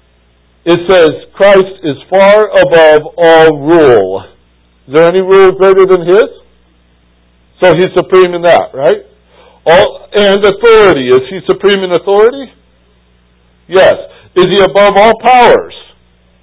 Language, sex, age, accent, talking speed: English, male, 60-79, American, 125 wpm